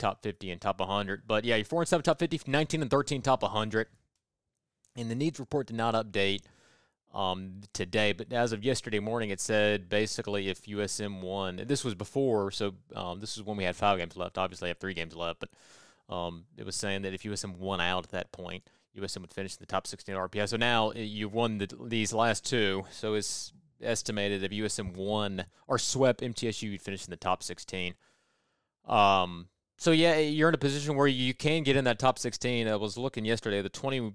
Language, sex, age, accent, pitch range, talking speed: English, male, 30-49, American, 100-125 Hz, 215 wpm